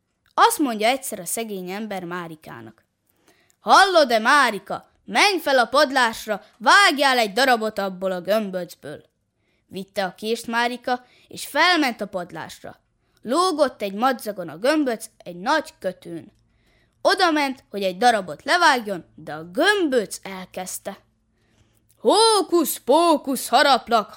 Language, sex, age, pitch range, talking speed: Hungarian, female, 20-39, 195-280 Hz, 120 wpm